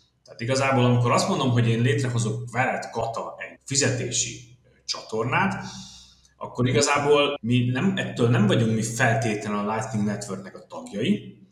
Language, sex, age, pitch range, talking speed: Hungarian, male, 30-49, 110-145 Hz, 135 wpm